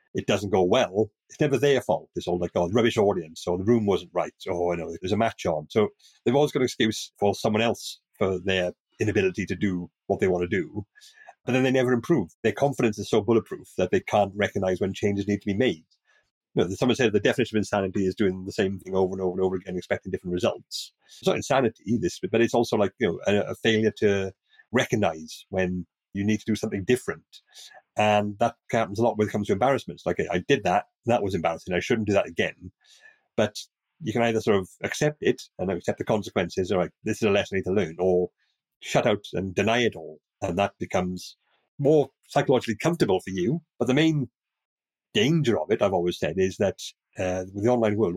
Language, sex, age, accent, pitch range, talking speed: English, male, 40-59, British, 95-120 Hz, 235 wpm